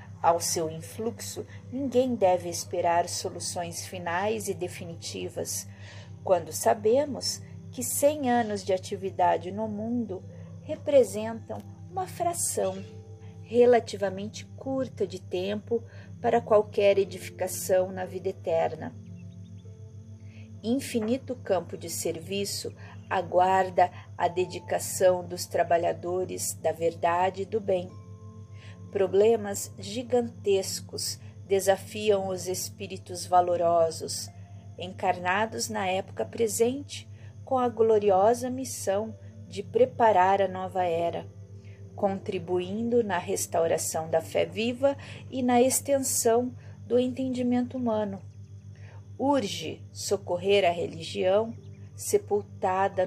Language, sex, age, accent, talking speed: Portuguese, female, 40-59, Brazilian, 95 wpm